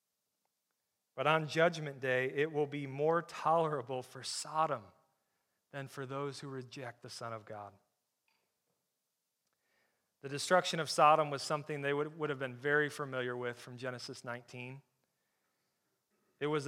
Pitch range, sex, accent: 130-155 Hz, male, American